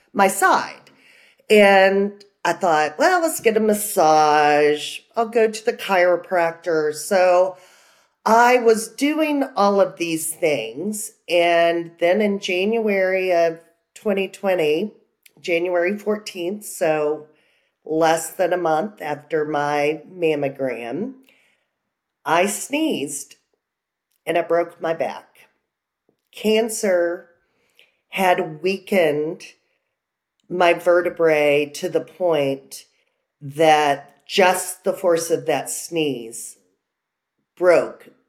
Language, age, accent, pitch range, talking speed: English, 40-59, American, 160-230 Hz, 95 wpm